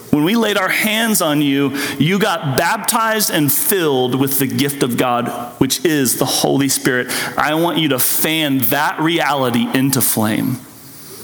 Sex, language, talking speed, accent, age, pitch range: male, English, 165 wpm, American, 40-59, 135-180 Hz